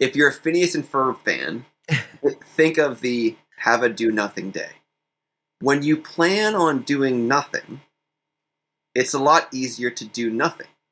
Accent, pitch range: American, 115-155 Hz